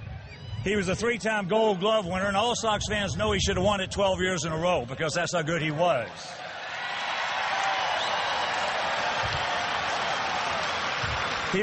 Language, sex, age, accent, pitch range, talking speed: English, male, 60-79, American, 175-215 Hz, 150 wpm